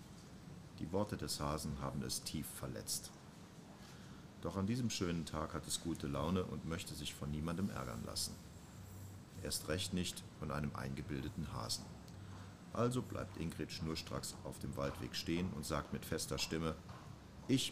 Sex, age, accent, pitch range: male, 40-59, German, 75-100 Hz